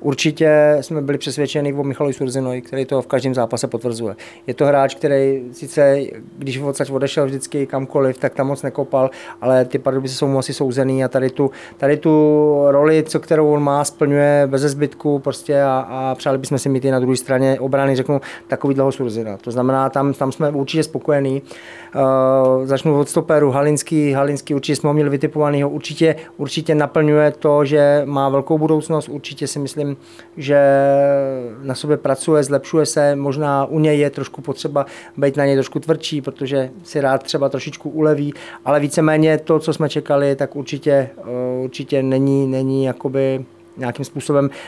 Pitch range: 135-150 Hz